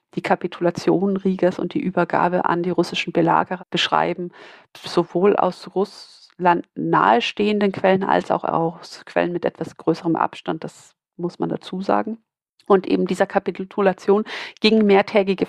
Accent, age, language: German, 50-69, German